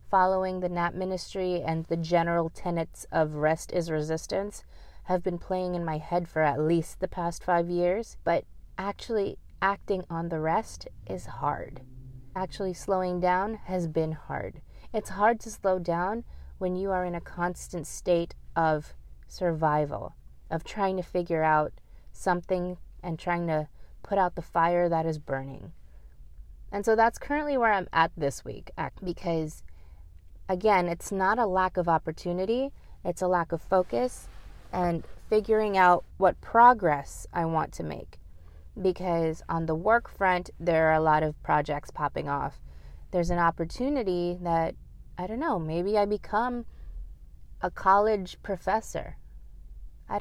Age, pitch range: 30-49, 155-190 Hz